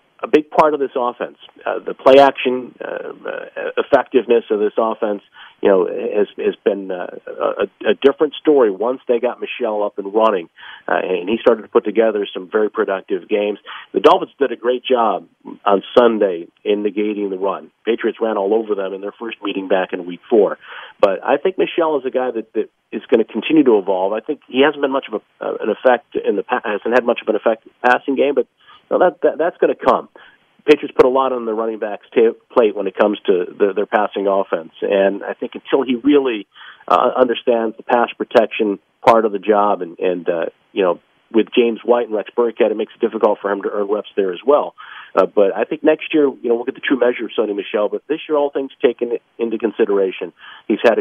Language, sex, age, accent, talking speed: English, male, 40-59, American, 235 wpm